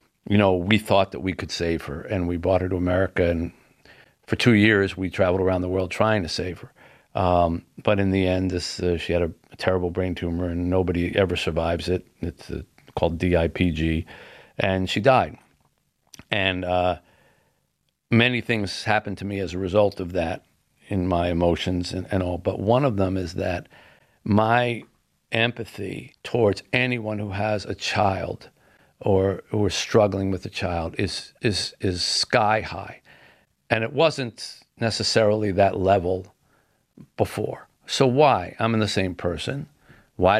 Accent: American